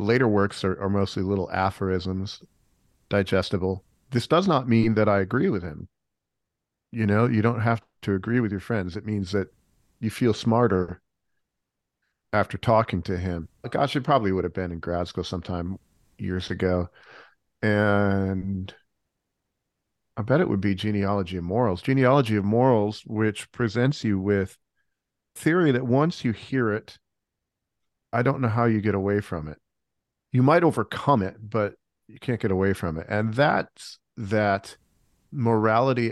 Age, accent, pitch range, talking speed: 40-59, American, 95-120 Hz, 160 wpm